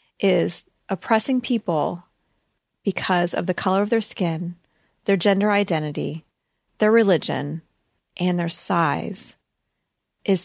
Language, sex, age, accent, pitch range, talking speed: English, female, 30-49, American, 170-210 Hz, 110 wpm